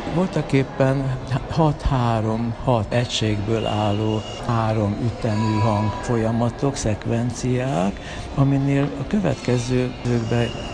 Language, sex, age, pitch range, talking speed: Hungarian, male, 60-79, 110-135 Hz, 75 wpm